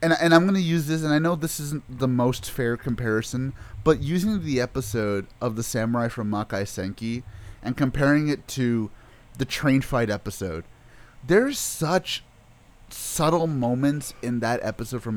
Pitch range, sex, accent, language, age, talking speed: 115-165 Hz, male, American, English, 30-49, 165 wpm